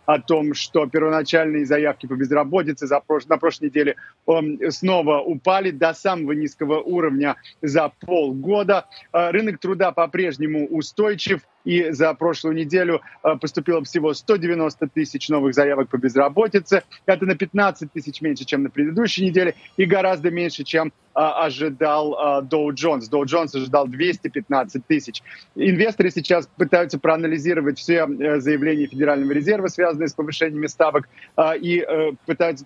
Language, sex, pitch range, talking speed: Russian, male, 145-170 Hz, 125 wpm